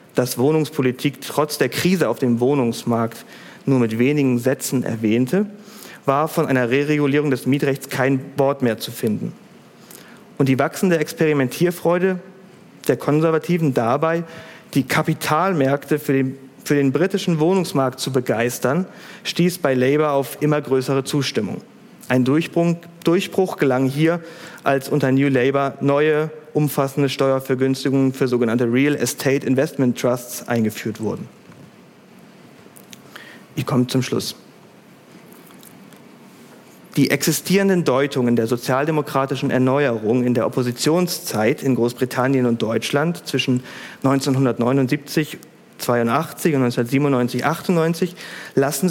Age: 40-59